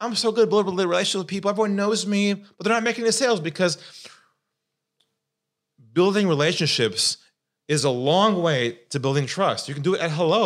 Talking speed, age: 190 wpm, 30-49